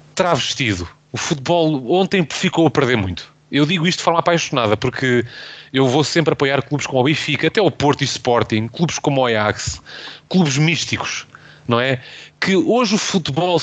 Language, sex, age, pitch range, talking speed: Portuguese, male, 30-49, 130-175 Hz, 175 wpm